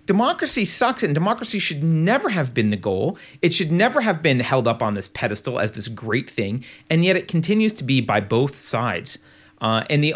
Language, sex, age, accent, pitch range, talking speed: English, male, 30-49, American, 120-165 Hz, 215 wpm